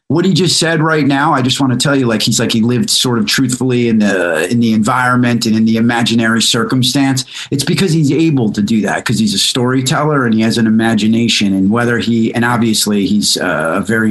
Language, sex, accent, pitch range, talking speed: English, male, American, 105-130 Hz, 235 wpm